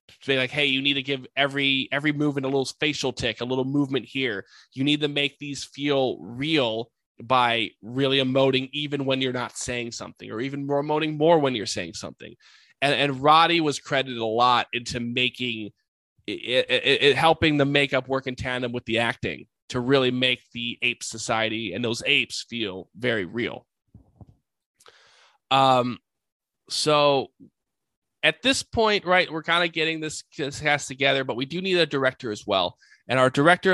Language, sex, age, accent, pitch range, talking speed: English, male, 20-39, American, 125-150 Hz, 180 wpm